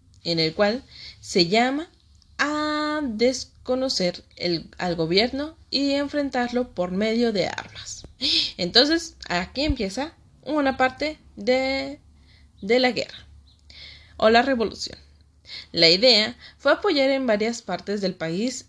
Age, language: 10-29, Spanish